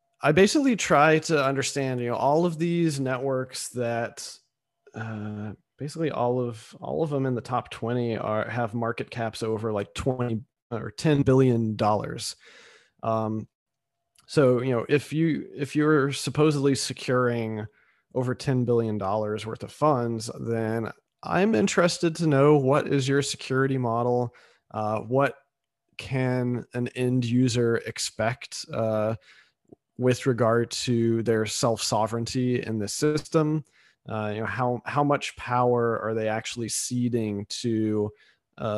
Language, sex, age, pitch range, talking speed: English, male, 30-49, 110-135 Hz, 140 wpm